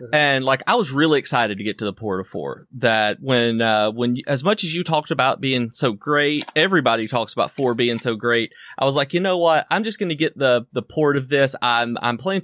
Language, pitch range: English, 120-145 Hz